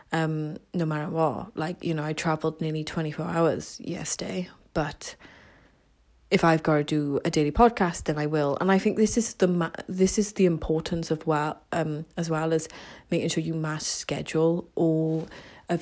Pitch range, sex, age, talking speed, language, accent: 160-205 Hz, female, 30-49, 180 wpm, English, British